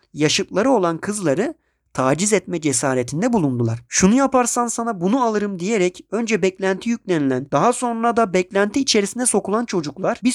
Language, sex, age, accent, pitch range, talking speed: Turkish, male, 40-59, native, 140-235 Hz, 140 wpm